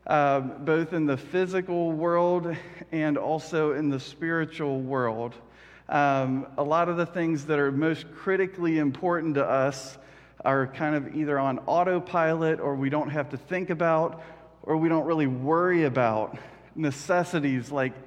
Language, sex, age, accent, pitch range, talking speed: English, male, 40-59, American, 135-165 Hz, 155 wpm